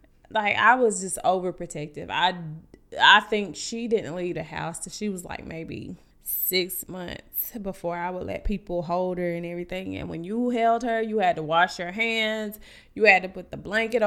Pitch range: 175-215 Hz